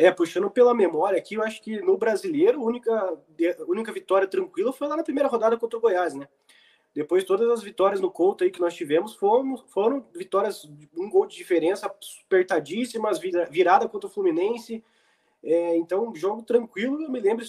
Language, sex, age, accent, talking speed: Portuguese, male, 20-39, Brazilian, 175 wpm